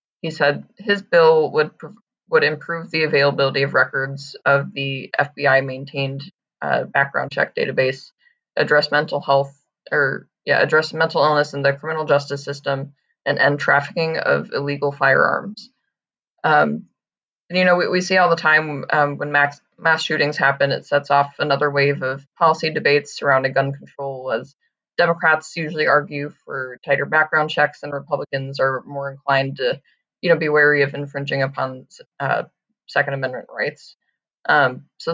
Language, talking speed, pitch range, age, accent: English, 155 wpm, 140-155 Hz, 20-39, American